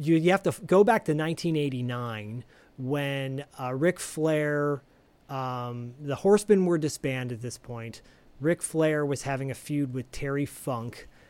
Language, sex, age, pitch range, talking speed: English, male, 40-59, 125-155 Hz, 155 wpm